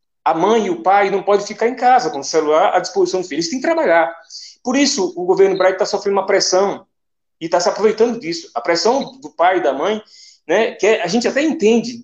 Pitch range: 165-240 Hz